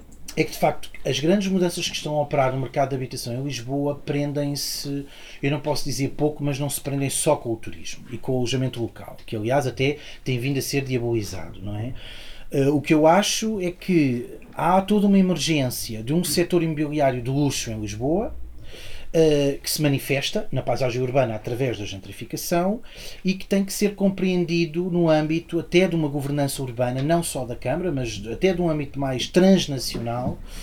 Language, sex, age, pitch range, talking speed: Portuguese, male, 30-49, 125-170 Hz, 190 wpm